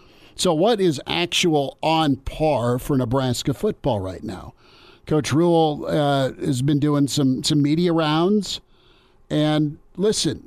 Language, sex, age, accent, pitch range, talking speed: English, male, 50-69, American, 135-165 Hz, 130 wpm